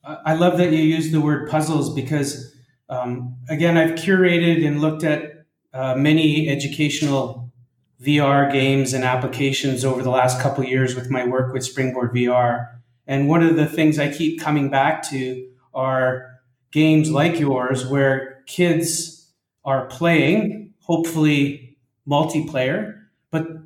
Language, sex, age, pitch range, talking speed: English, male, 30-49, 130-160 Hz, 140 wpm